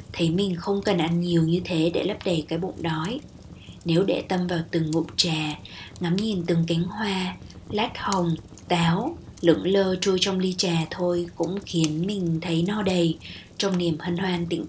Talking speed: 190 wpm